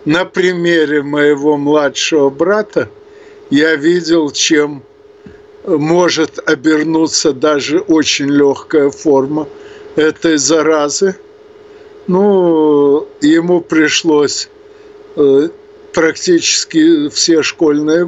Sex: male